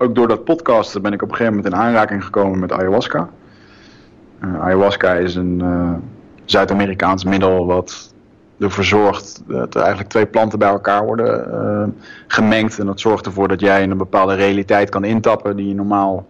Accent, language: Dutch, Dutch